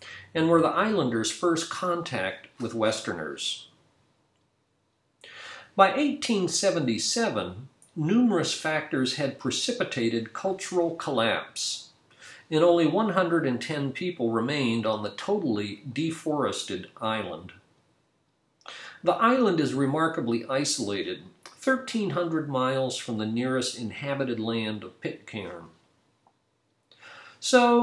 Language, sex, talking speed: English, male, 90 wpm